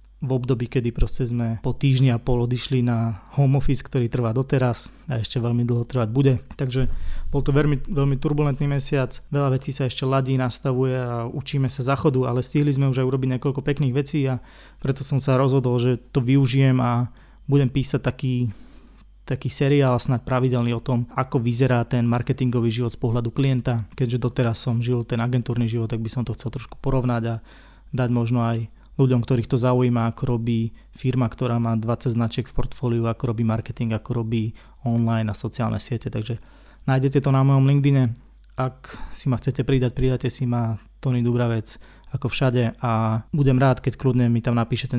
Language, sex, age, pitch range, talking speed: Slovak, male, 20-39, 120-135 Hz, 185 wpm